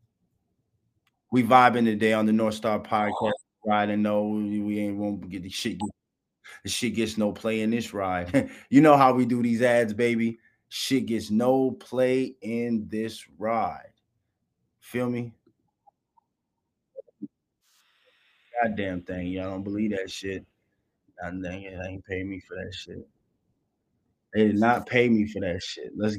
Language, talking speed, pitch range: English, 155 wpm, 95-115 Hz